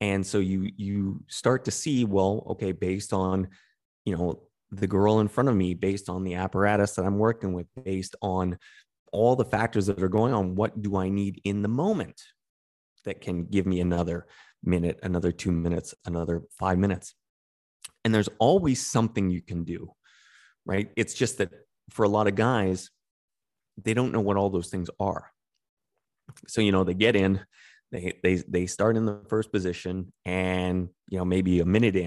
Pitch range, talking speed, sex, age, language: 90-110 Hz, 185 wpm, male, 30-49, English